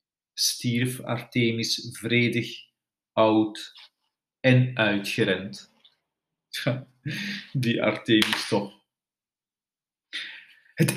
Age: 40-59